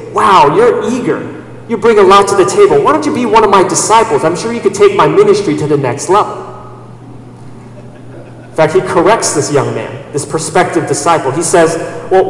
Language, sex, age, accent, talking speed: English, male, 40-59, American, 205 wpm